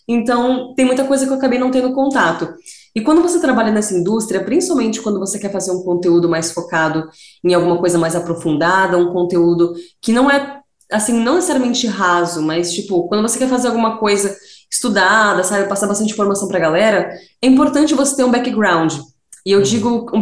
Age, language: 20-39, Portuguese